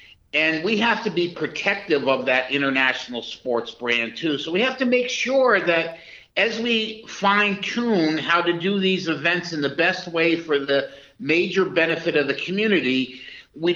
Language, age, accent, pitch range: English, 50-69, American, 150-185 Hz